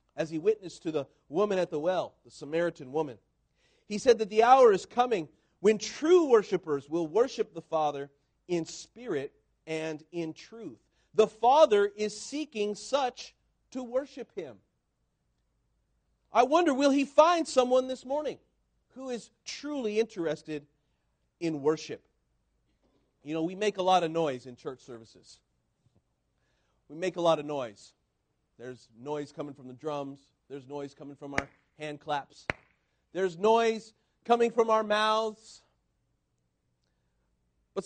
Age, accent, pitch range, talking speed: 40-59, American, 145-235 Hz, 145 wpm